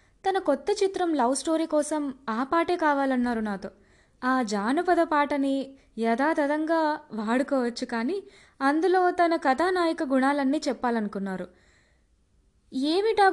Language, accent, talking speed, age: Telugu, native, 100 wpm, 20-39